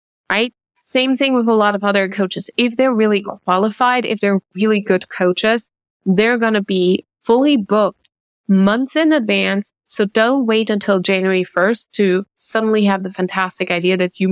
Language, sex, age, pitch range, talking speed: English, female, 20-39, 185-230 Hz, 170 wpm